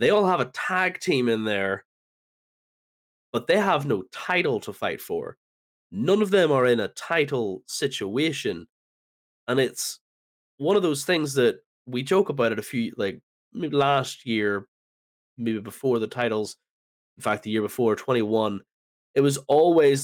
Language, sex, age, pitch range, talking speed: English, male, 20-39, 105-160 Hz, 160 wpm